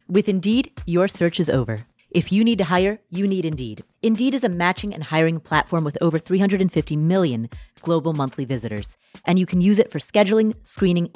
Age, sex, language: 30-49, female, English